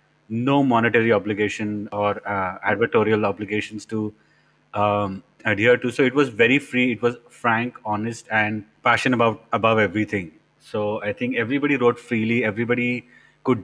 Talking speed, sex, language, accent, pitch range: 145 wpm, male, Hindi, native, 105-120 Hz